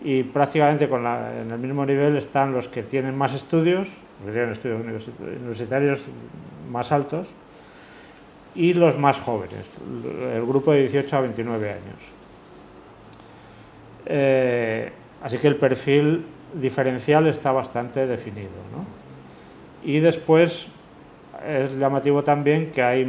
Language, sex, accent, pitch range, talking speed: Spanish, male, Spanish, 120-150 Hz, 120 wpm